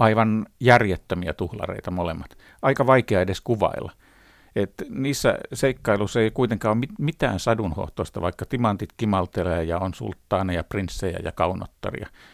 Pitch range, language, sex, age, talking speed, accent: 95-120 Hz, Finnish, male, 50-69, 120 wpm, native